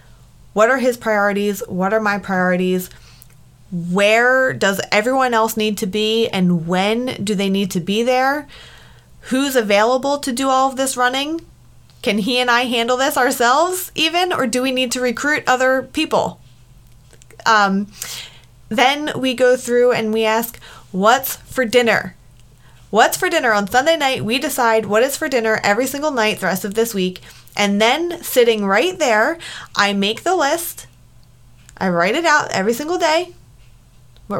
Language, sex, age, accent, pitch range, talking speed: English, female, 20-39, American, 190-260 Hz, 165 wpm